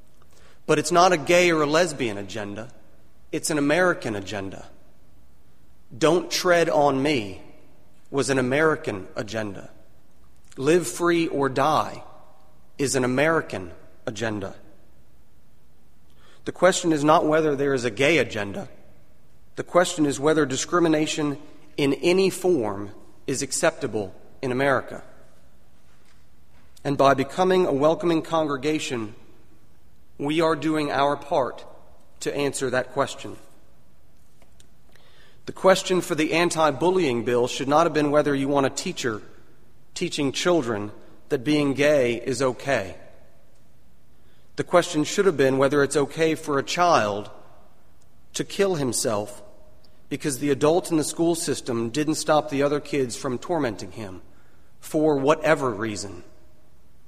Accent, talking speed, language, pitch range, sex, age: American, 125 wpm, English, 110-155 Hz, male, 30-49